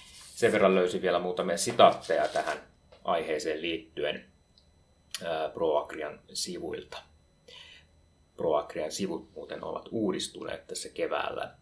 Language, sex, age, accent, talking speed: Finnish, male, 30-49, native, 95 wpm